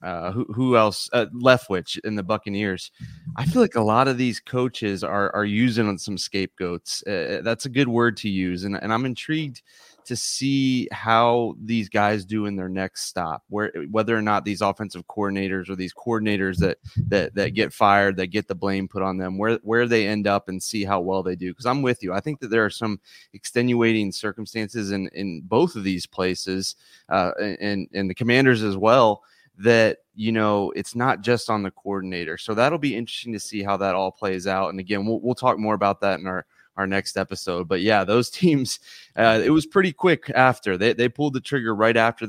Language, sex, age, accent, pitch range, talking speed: English, male, 30-49, American, 95-120 Hz, 215 wpm